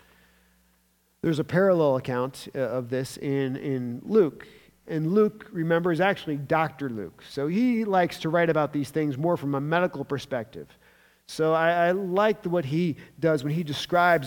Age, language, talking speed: 40-59, English, 165 wpm